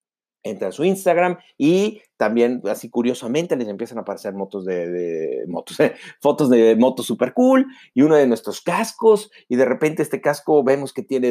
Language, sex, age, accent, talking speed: Spanish, male, 40-59, Mexican, 190 wpm